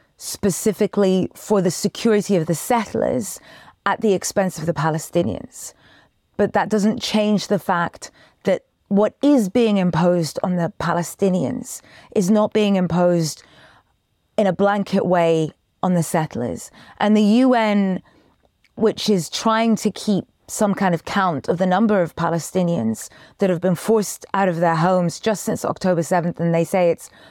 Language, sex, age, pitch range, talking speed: English, female, 30-49, 175-215 Hz, 155 wpm